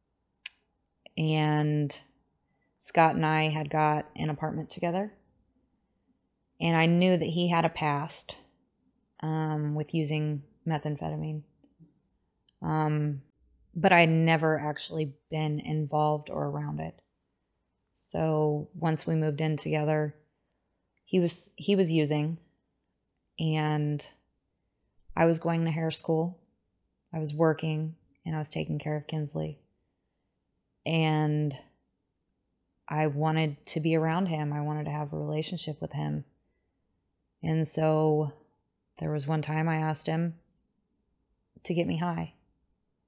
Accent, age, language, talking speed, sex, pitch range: American, 20-39, English, 125 wpm, female, 150-160 Hz